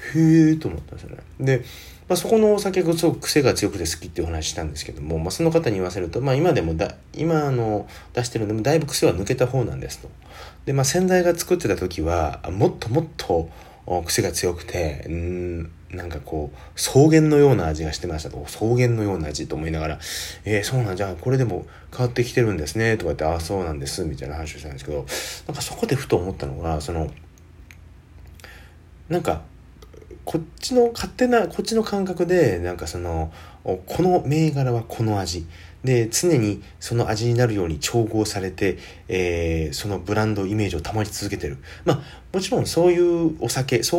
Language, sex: Japanese, male